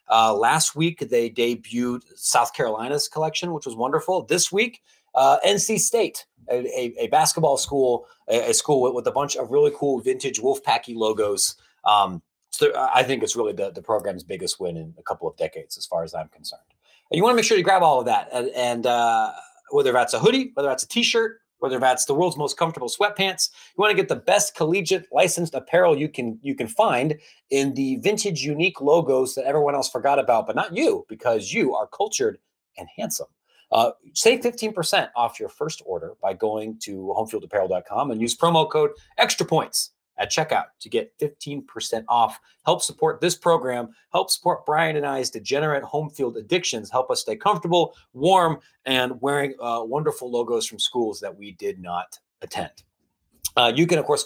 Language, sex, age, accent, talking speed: English, male, 30-49, American, 195 wpm